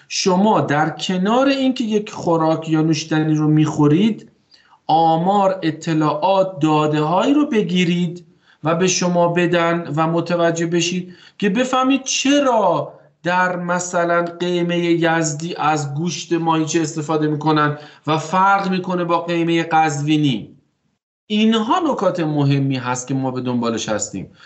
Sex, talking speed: male, 120 wpm